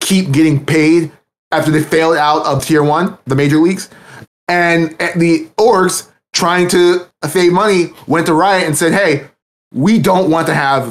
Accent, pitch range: American, 145-175 Hz